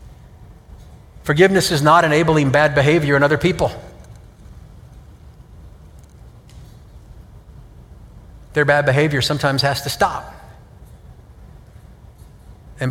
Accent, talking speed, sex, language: American, 80 wpm, male, English